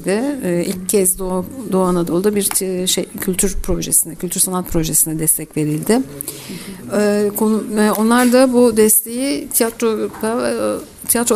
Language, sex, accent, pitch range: Turkish, female, native, 180-220 Hz